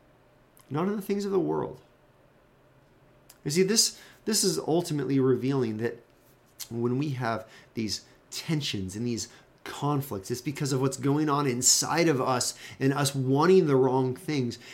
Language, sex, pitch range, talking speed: English, male, 105-145 Hz, 155 wpm